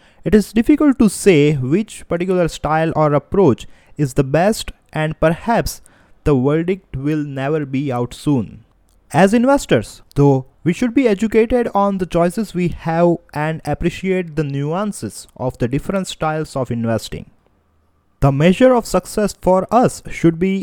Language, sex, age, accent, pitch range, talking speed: English, male, 20-39, Indian, 125-180 Hz, 150 wpm